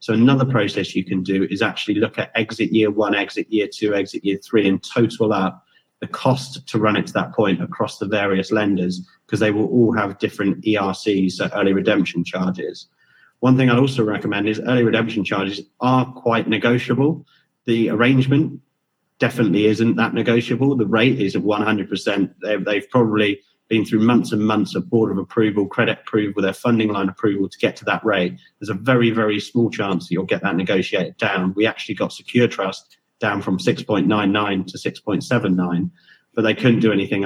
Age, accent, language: 30-49, British, English